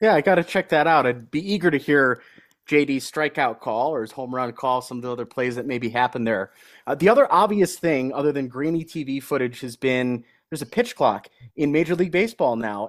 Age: 30-49